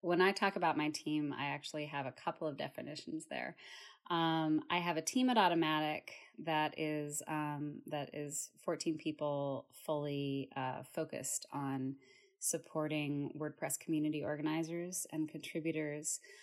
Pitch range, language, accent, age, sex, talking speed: 150-180 Hz, English, American, 20-39, female, 140 wpm